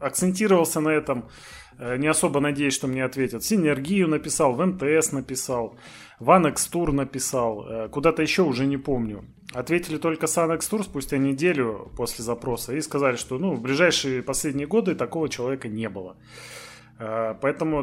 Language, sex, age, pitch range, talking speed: Russian, male, 20-39, 125-180 Hz, 160 wpm